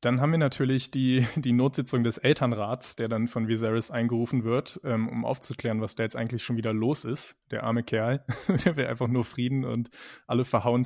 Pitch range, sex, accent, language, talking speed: 120-135 Hz, male, German, German, 200 wpm